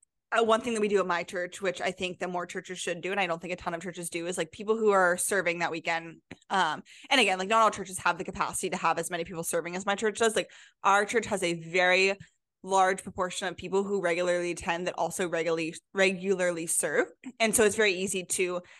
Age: 20-39